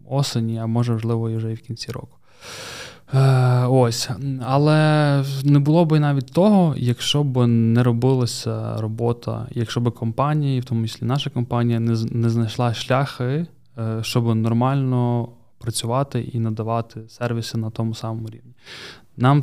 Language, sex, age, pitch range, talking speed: Ukrainian, male, 20-39, 115-130 Hz, 140 wpm